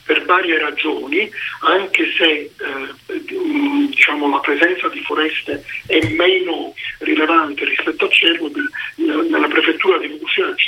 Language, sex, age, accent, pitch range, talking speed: Italian, male, 50-69, native, 285-385 Hz, 135 wpm